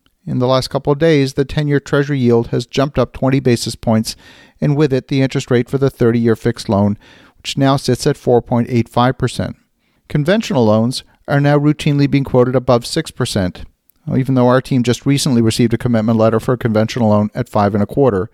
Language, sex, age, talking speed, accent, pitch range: English, male, 40-59, 185 wpm, American, 115-145 Hz